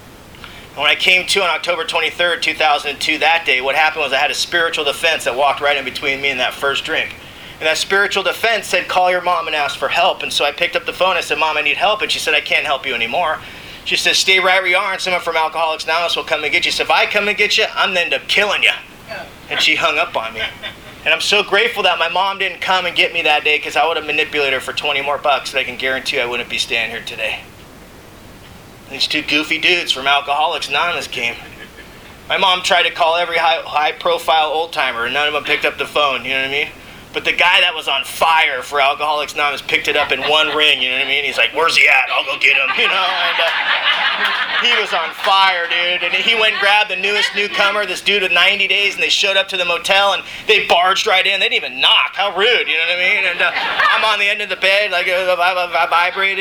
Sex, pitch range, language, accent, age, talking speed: male, 150-205 Hz, English, American, 30-49, 265 wpm